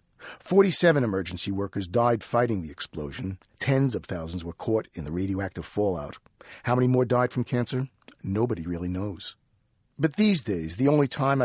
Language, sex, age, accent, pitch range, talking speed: English, male, 50-69, American, 100-140 Hz, 160 wpm